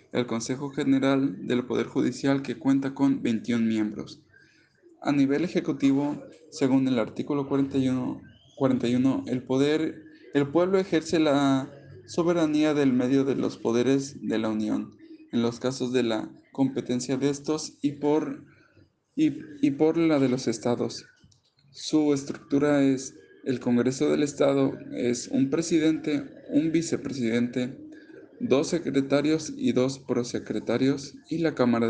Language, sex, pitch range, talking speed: Spanish, male, 125-150 Hz, 135 wpm